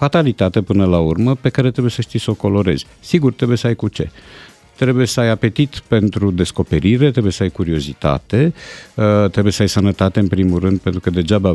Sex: male